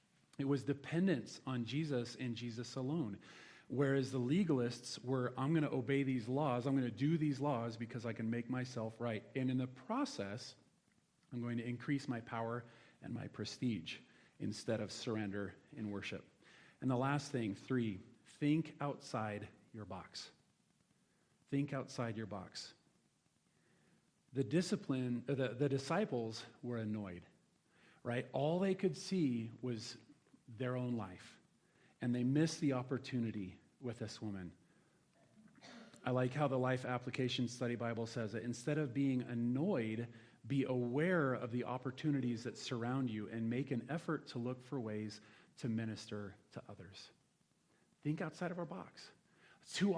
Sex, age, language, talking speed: male, 40-59, English, 150 wpm